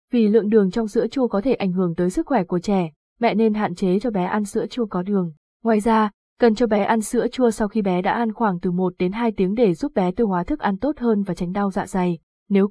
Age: 20-39